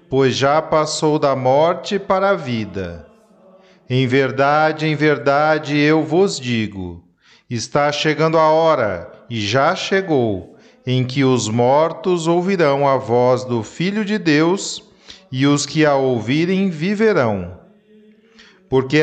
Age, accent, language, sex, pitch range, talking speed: 40-59, Brazilian, Portuguese, male, 135-180 Hz, 125 wpm